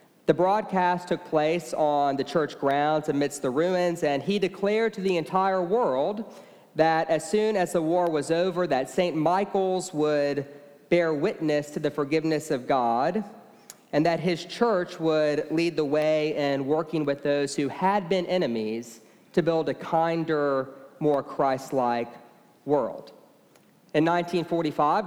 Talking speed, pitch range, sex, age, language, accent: 150 wpm, 140-170 Hz, male, 40-59, English, American